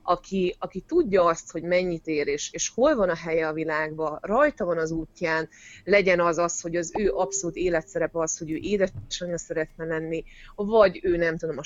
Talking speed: 195 wpm